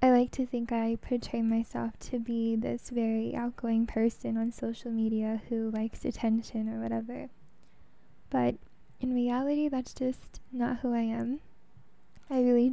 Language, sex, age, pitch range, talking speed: English, female, 10-29, 230-250 Hz, 150 wpm